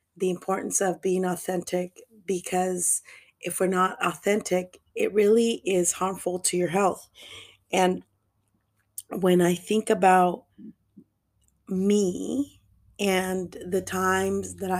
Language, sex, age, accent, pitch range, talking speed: English, female, 30-49, American, 180-200 Hz, 110 wpm